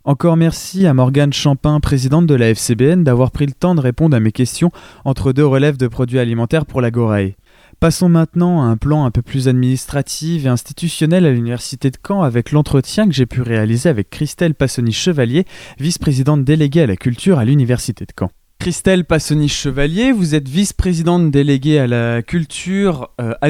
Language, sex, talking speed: French, male, 180 wpm